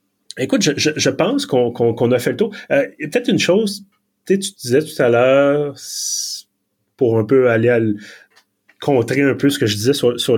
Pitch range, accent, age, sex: 110-145 Hz, Canadian, 30-49, male